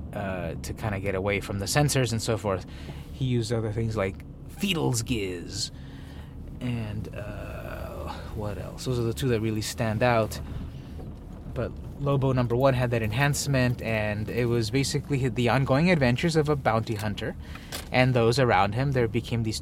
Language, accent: English, American